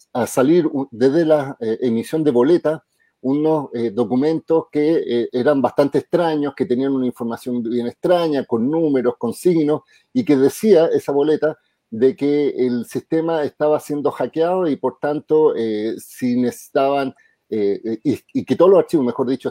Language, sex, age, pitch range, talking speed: Spanish, male, 40-59, 125-165 Hz, 165 wpm